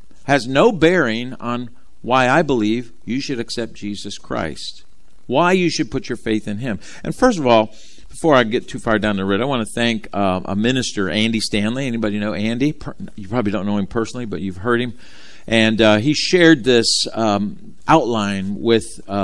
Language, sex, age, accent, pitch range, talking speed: English, male, 50-69, American, 105-155 Hz, 195 wpm